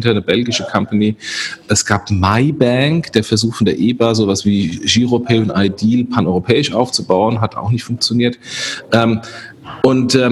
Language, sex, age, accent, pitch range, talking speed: German, male, 40-59, German, 110-130 Hz, 135 wpm